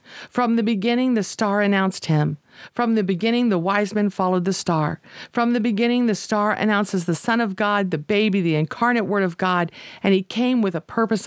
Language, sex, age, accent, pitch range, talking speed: English, female, 50-69, American, 185-240 Hz, 210 wpm